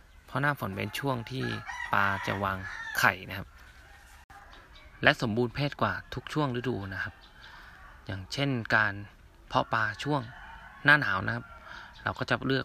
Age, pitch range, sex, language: 20-39, 100-125 Hz, male, Thai